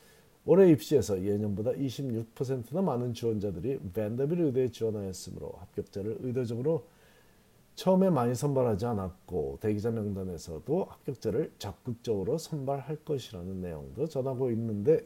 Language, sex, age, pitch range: Korean, male, 40-59, 100-150 Hz